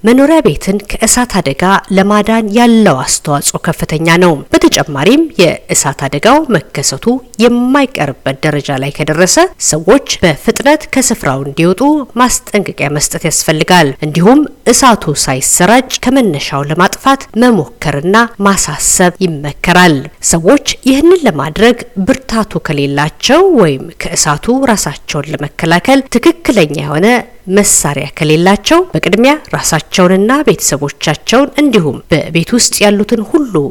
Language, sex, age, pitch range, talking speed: Amharic, female, 50-69, 155-235 Hz, 95 wpm